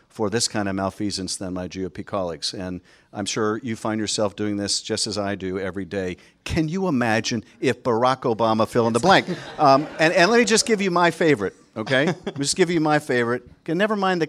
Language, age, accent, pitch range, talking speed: English, 50-69, American, 110-155 Hz, 225 wpm